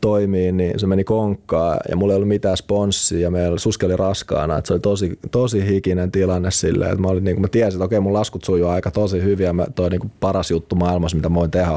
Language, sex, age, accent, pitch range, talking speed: Finnish, male, 30-49, native, 85-100 Hz, 230 wpm